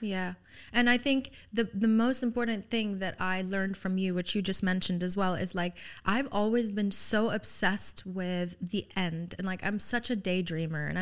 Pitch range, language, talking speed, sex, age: 185-225 Hz, English, 200 wpm, female, 20-39